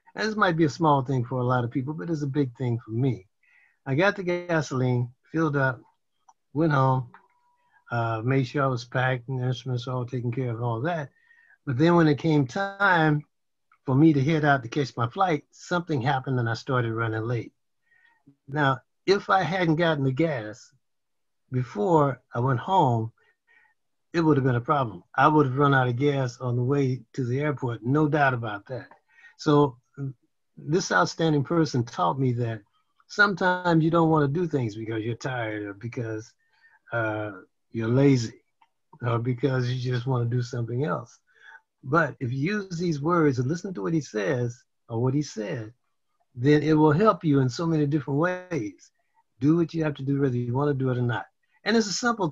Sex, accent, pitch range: male, American, 125-160 Hz